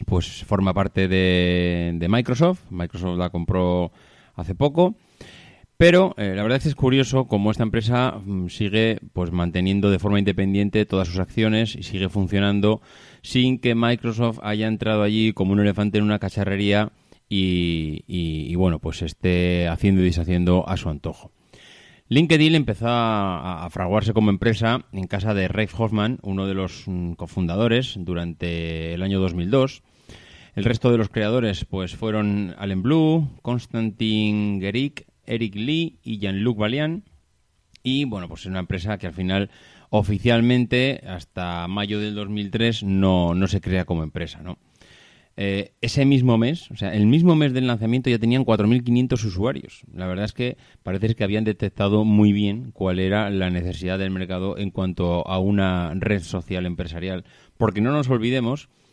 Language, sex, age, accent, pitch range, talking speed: Spanish, male, 30-49, Spanish, 90-115 Hz, 160 wpm